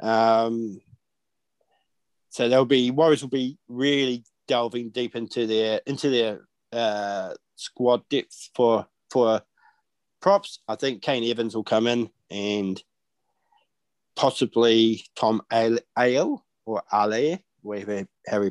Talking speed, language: 120 wpm, English